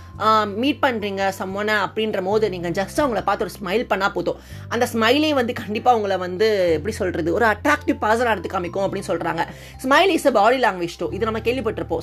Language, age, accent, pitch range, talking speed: Tamil, 20-39, native, 195-245 Hz, 185 wpm